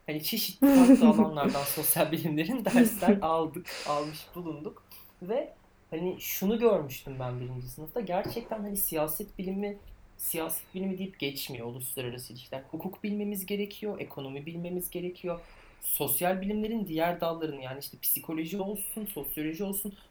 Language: Turkish